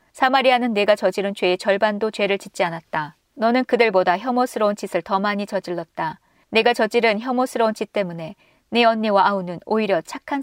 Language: Korean